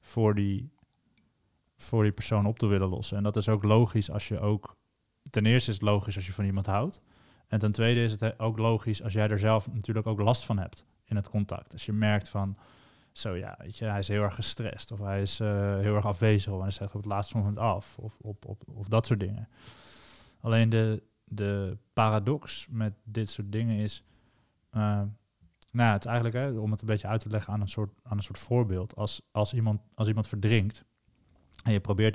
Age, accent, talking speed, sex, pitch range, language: 20-39, Dutch, 215 wpm, male, 100-115 Hz, Dutch